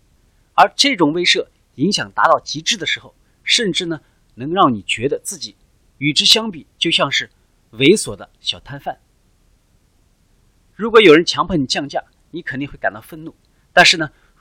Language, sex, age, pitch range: Chinese, male, 30-49, 110-180 Hz